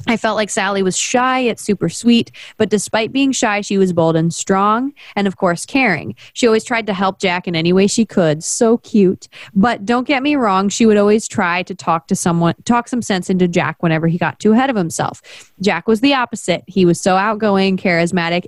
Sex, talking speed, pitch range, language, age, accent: female, 225 wpm, 185-235 Hz, English, 20-39, American